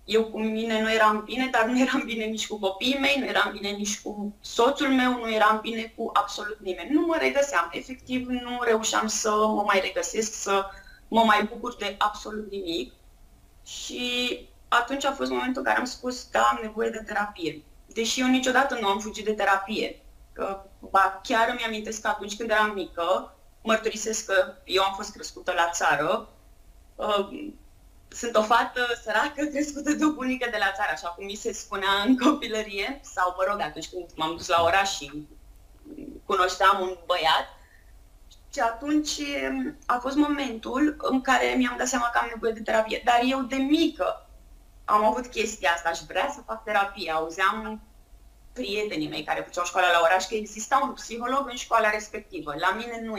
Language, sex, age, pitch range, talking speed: Romanian, female, 20-39, 195-250 Hz, 180 wpm